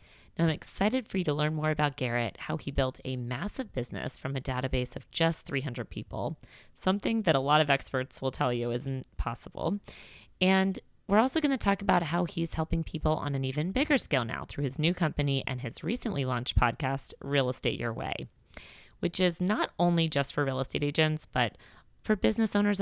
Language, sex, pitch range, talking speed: English, female, 145-190 Hz, 200 wpm